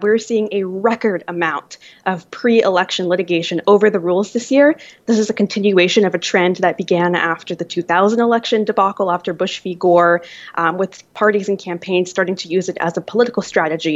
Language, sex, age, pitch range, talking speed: English, female, 20-39, 180-220 Hz, 190 wpm